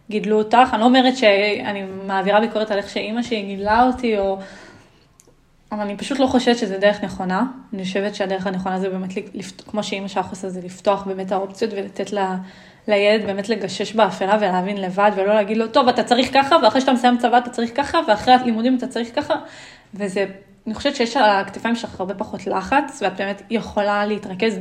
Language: Hebrew